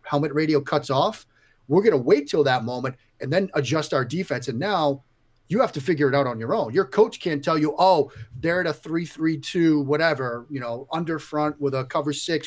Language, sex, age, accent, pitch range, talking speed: English, male, 40-59, American, 125-160 Hz, 230 wpm